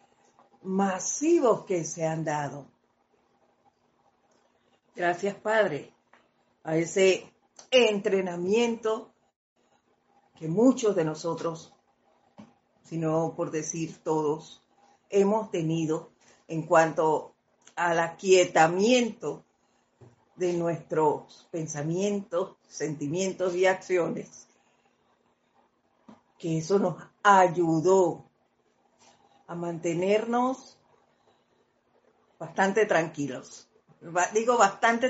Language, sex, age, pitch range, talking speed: Spanish, female, 50-69, 165-220 Hz, 70 wpm